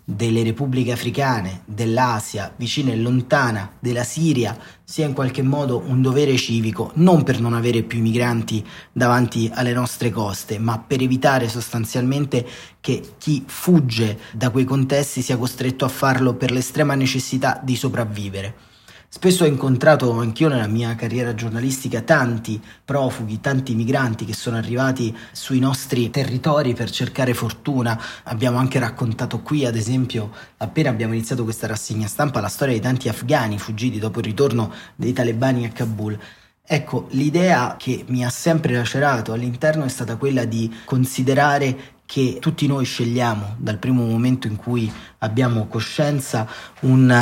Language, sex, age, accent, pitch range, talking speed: Italian, male, 30-49, native, 115-135 Hz, 145 wpm